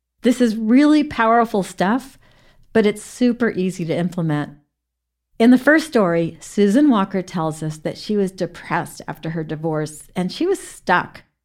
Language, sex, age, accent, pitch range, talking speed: English, female, 50-69, American, 160-215 Hz, 155 wpm